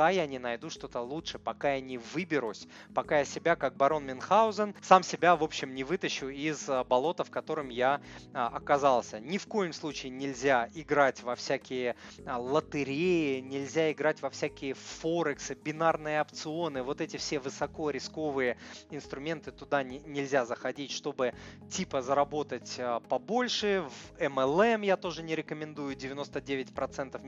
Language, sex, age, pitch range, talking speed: Russian, male, 20-39, 130-160 Hz, 140 wpm